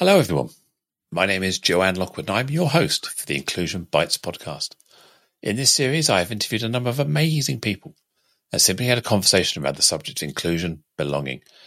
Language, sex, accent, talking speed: English, male, British, 195 wpm